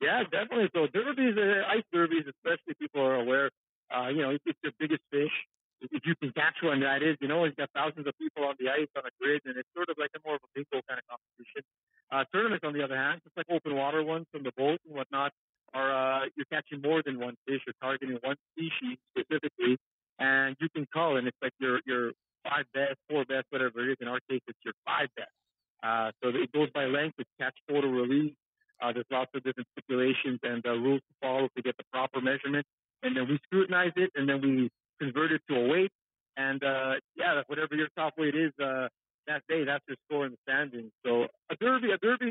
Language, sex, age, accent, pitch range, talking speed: English, male, 50-69, American, 135-160 Hz, 235 wpm